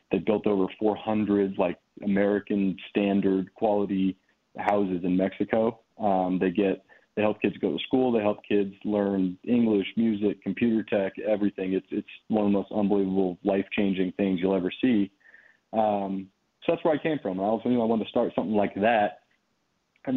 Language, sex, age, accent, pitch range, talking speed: English, male, 30-49, American, 100-115 Hz, 180 wpm